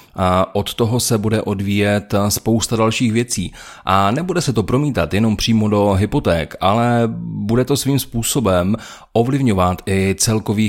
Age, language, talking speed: 30-49, Czech, 145 wpm